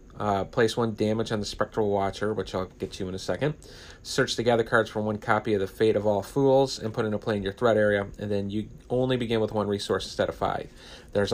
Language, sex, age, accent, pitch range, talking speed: English, male, 30-49, American, 100-120 Hz, 255 wpm